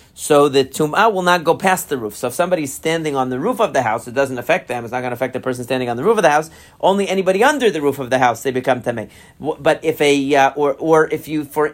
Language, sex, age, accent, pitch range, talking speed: English, male, 40-59, American, 135-180 Hz, 290 wpm